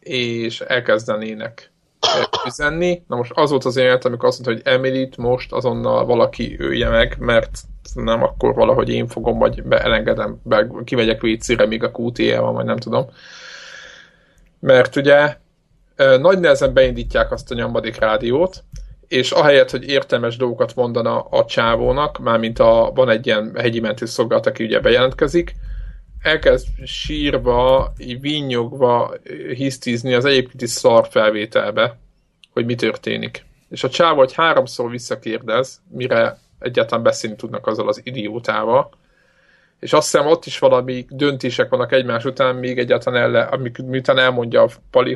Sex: male